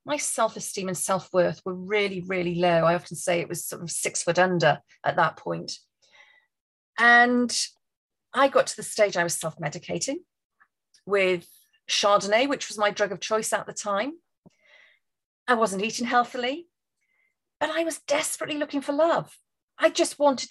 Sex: female